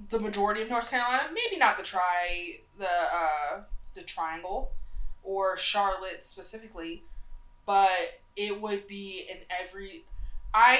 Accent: American